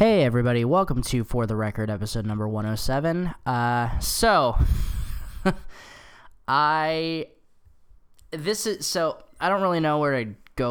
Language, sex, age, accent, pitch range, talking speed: English, male, 10-29, American, 110-140 Hz, 145 wpm